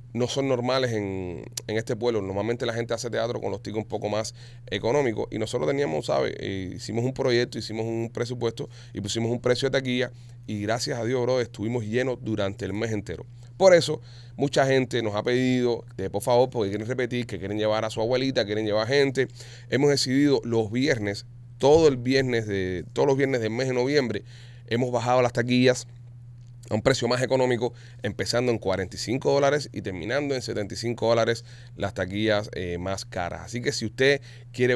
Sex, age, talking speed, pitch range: male, 30-49, 195 wpm, 110-130 Hz